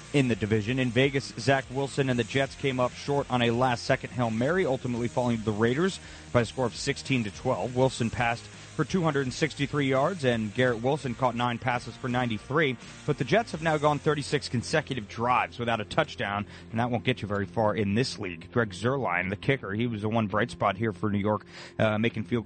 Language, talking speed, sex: English, 220 wpm, male